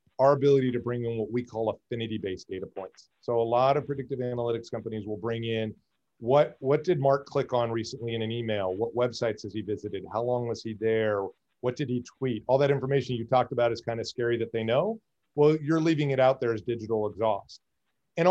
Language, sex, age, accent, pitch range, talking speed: English, male, 40-59, American, 110-135 Hz, 225 wpm